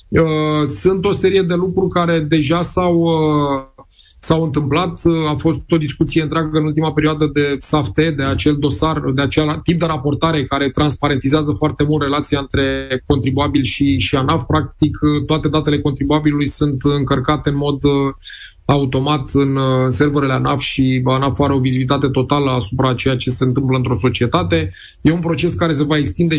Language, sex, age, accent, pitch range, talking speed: Romanian, male, 20-39, native, 140-165 Hz, 160 wpm